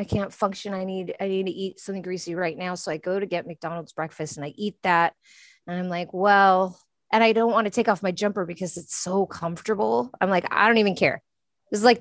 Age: 30-49